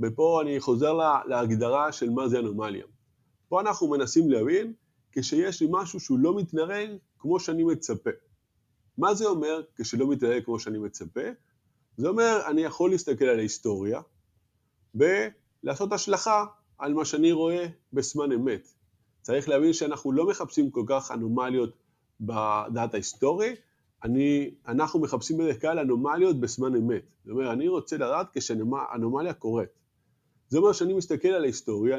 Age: 20-39